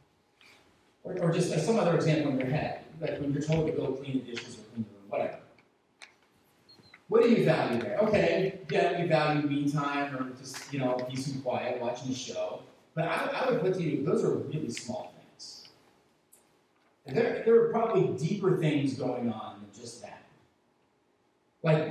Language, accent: English, American